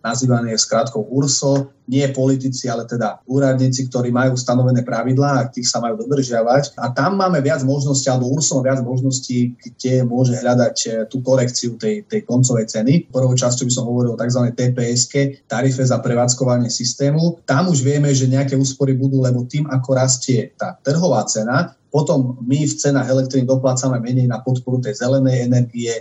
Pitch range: 125-140 Hz